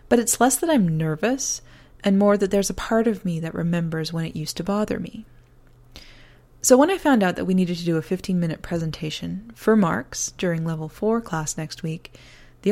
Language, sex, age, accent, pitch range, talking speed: English, female, 20-39, American, 155-215 Hz, 210 wpm